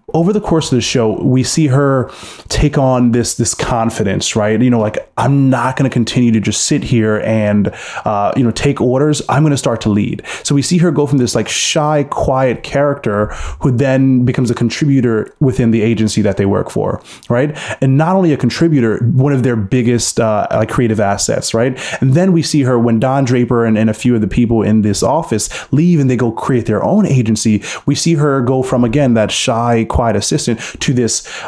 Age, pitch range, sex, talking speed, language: 20-39, 110-135 Hz, male, 220 wpm, English